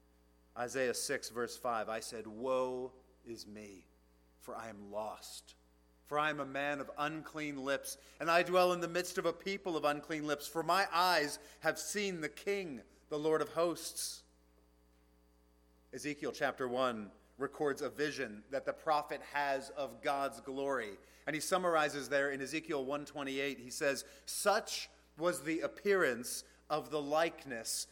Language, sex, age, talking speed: English, male, 40-59, 155 wpm